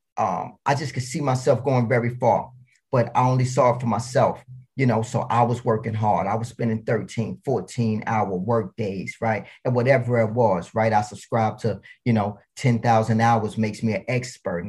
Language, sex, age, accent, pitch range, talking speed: English, male, 30-49, American, 110-125 Hz, 195 wpm